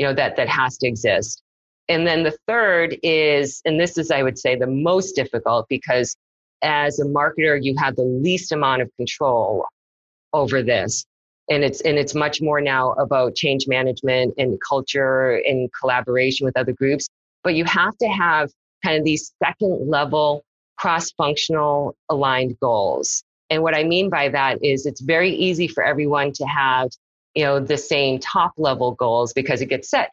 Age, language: 30-49, English